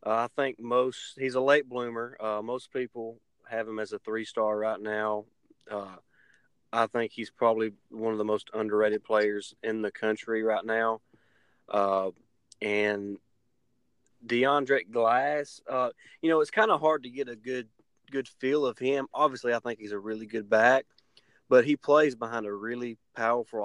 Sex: male